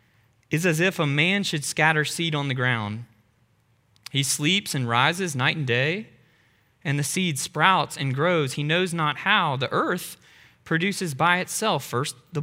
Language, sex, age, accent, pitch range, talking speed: English, male, 20-39, American, 125-175 Hz, 170 wpm